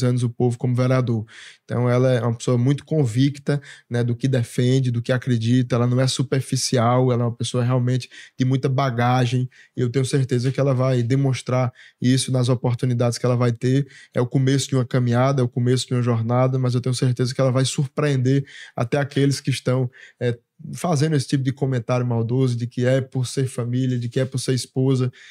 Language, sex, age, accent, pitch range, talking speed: Portuguese, male, 20-39, Brazilian, 125-135 Hz, 210 wpm